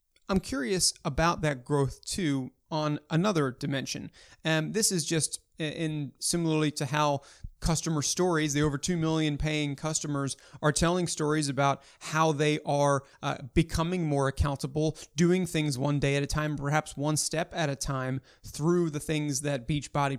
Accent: American